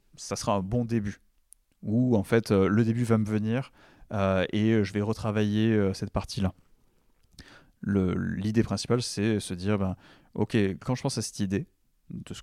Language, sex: French, male